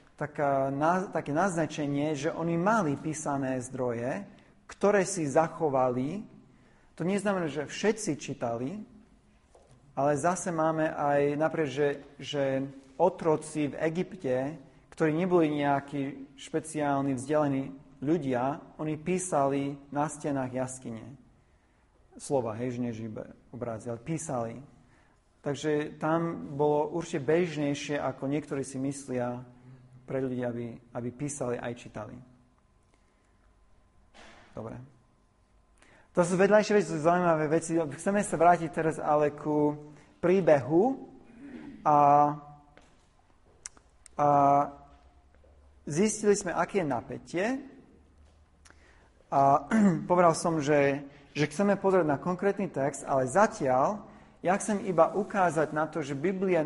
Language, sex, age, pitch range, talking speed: Slovak, male, 40-59, 135-165 Hz, 105 wpm